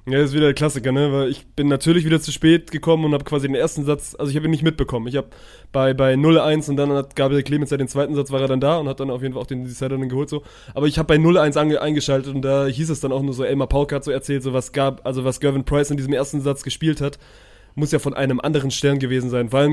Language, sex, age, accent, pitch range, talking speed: German, male, 20-39, German, 130-150 Hz, 300 wpm